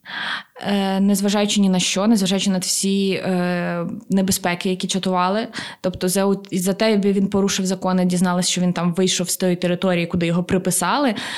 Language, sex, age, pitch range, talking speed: Ukrainian, female, 20-39, 180-220 Hz, 155 wpm